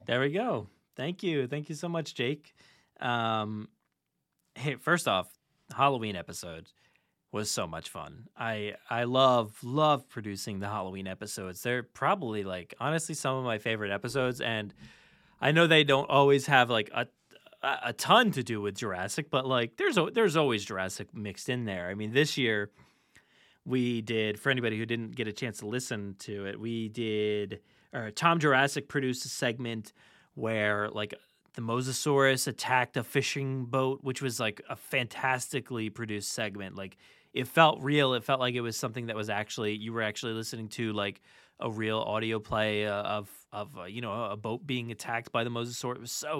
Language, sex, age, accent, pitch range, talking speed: English, male, 20-39, American, 105-135 Hz, 185 wpm